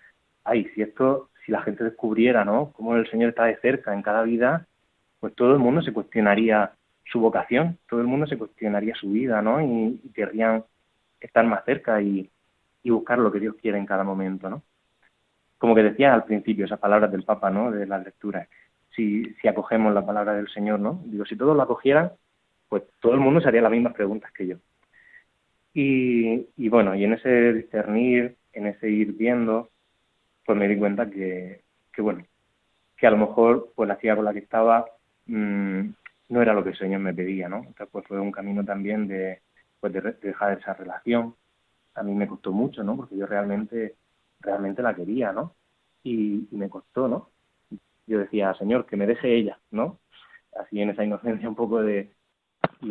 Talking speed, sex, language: 195 wpm, male, Spanish